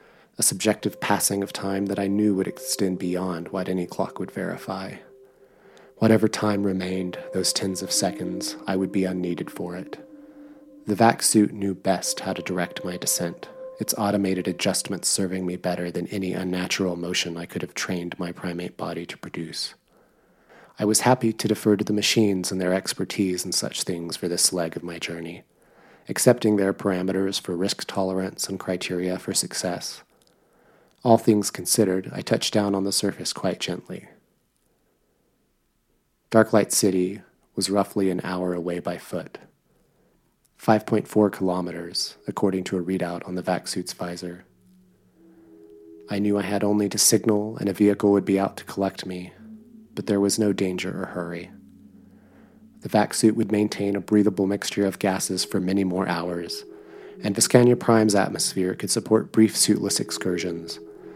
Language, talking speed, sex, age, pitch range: English, 160 wpm, male, 30-49, 90-105 Hz